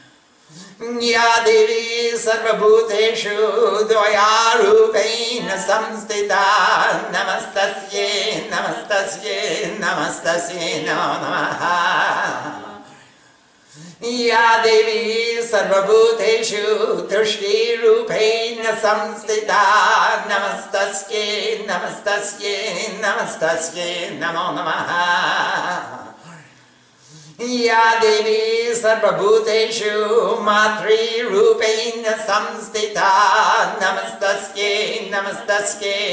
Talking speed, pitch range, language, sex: 50 wpm, 200-230 Hz, English, male